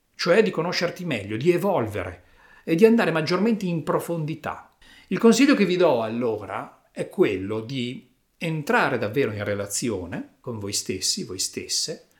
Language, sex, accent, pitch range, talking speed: Italian, male, native, 125-200 Hz, 150 wpm